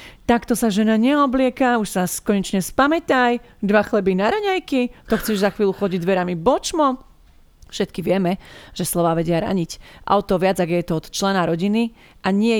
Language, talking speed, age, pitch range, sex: Slovak, 165 wpm, 30-49, 170-205 Hz, female